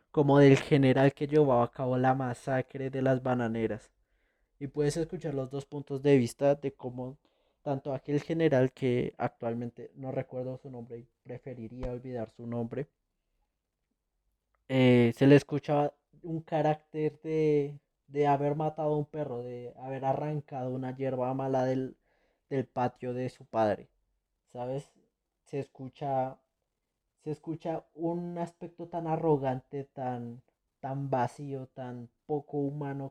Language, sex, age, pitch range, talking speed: Spanish, male, 20-39, 125-150 Hz, 140 wpm